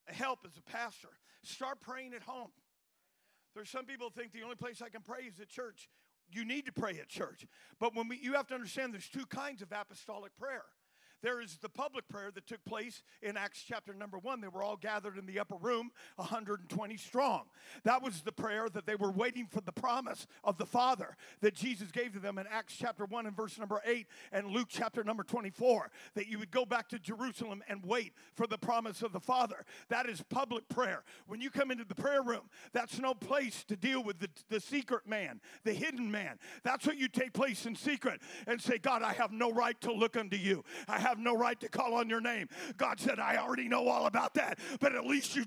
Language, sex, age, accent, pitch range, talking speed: English, male, 50-69, American, 215-265 Hz, 230 wpm